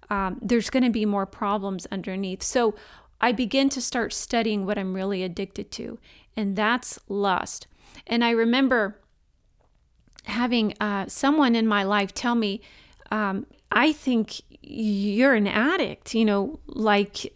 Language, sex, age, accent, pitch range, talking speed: English, female, 30-49, American, 195-235 Hz, 145 wpm